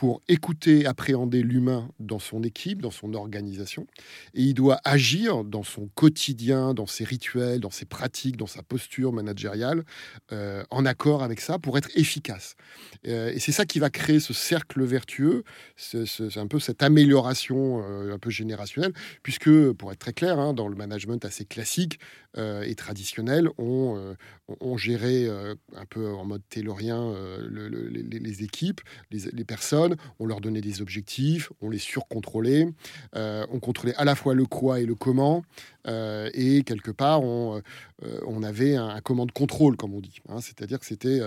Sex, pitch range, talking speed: male, 110-140 Hz, 185 wpm